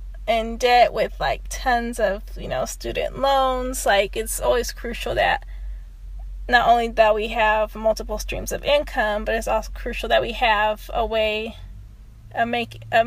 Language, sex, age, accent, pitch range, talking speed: English, female, 20-39, American, 215-265 Hz, 160 wpm